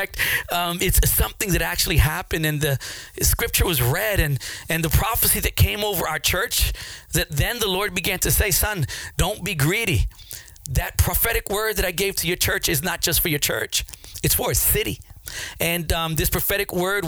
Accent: American